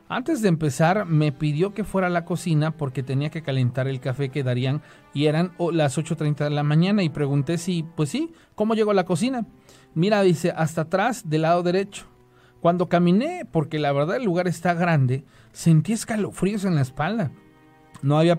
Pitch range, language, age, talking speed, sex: 150-190 Hz, Spanish, 40-59, 190 wpm, male